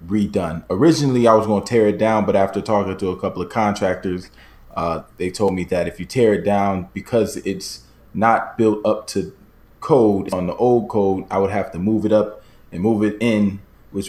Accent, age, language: American, 20-39, English